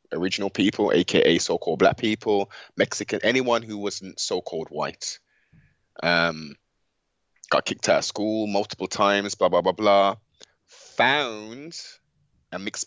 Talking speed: 125 wpm